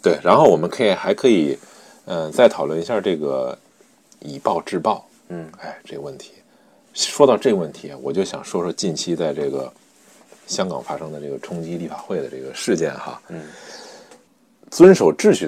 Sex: male